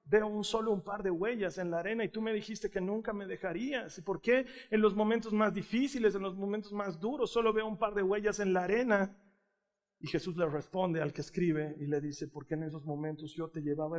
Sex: male